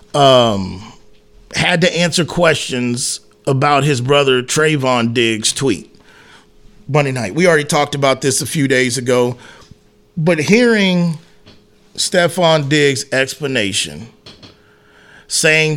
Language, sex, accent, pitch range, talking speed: English, male, American, 125-155 Hz, 105 wpm